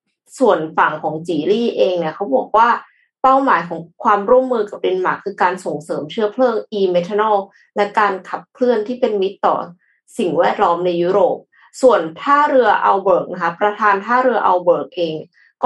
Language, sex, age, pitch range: Thai, female, 20-39, 180-245 Hz